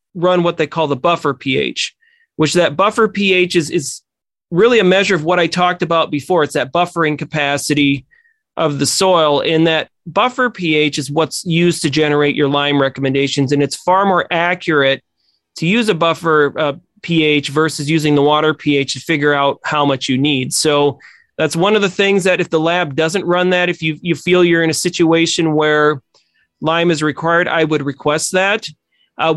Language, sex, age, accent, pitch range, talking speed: English, male, 30-49, American, 150-180 Hz, 190 wpm